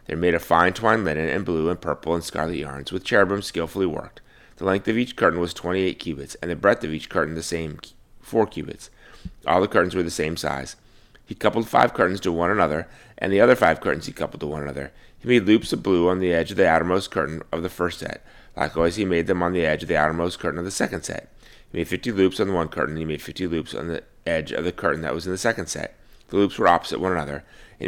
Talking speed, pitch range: 265 wpm, 80-95 Hz